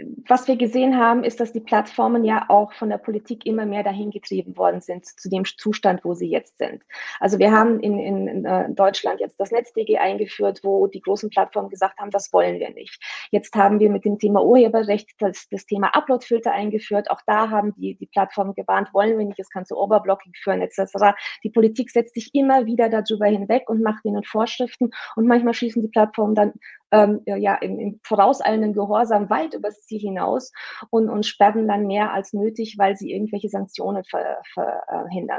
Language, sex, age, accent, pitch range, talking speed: German, female, 20-39, German, 195-220 Hz, 195 wpm